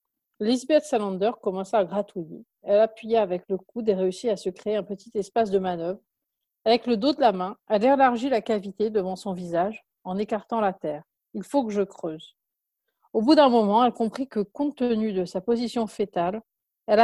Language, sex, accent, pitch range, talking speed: French, female, French, 195-250 Hz, 195 wpm